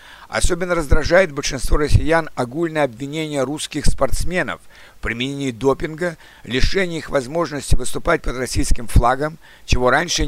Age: 60-79